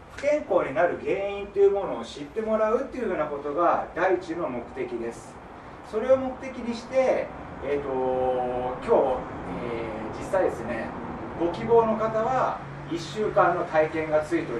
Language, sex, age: Japanese, male, 40-59